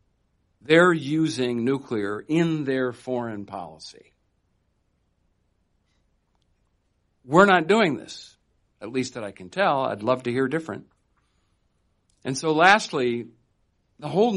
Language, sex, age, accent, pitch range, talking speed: English, male, 60-79, American, 100-135 Hz, 115 wpm